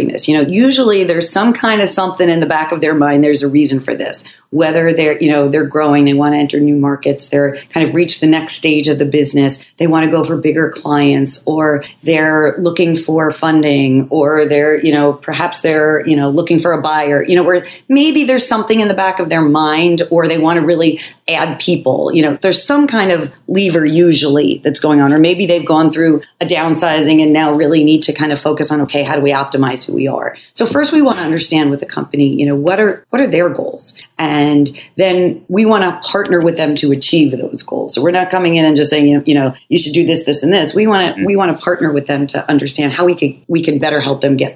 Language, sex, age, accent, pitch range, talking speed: English, female, 40-59, American, 145-170 Hz, 250 wpm